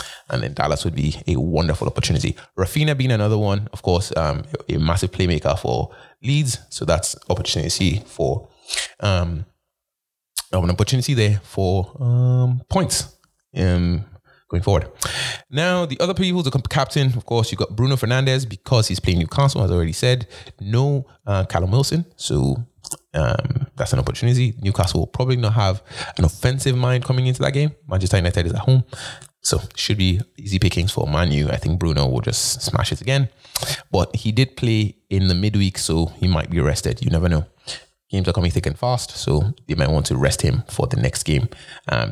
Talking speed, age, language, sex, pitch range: 180 wpm, 20-39, English, male, 95-130 Hz